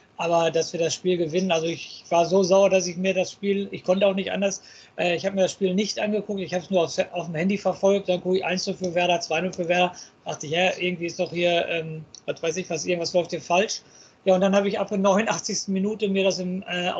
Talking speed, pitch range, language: 270 wpm, 180-215 Hz, German